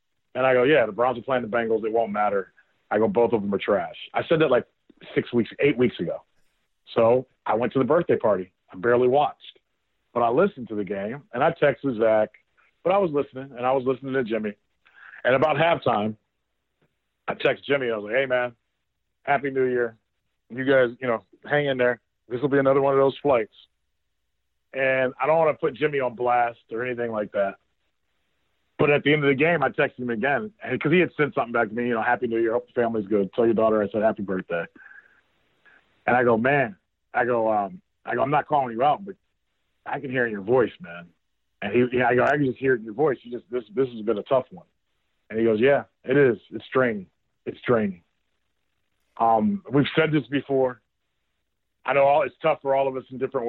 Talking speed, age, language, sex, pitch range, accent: 230 wpm, 40-59, English, male, 110-135 Hz, American